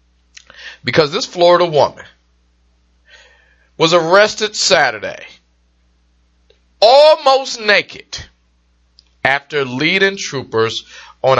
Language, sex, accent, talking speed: English, male, American, 70 wpm